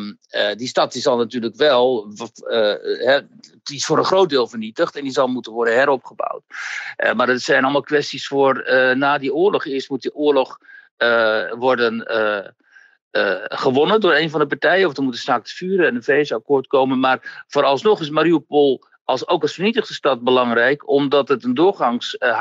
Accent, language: Dutch, Dutch